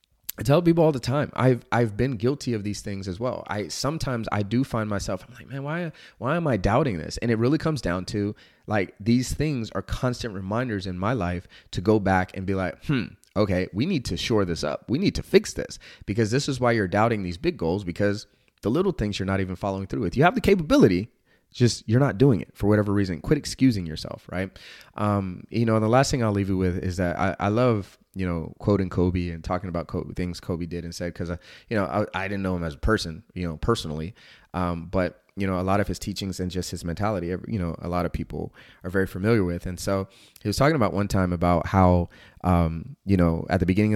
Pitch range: 90-115 Hz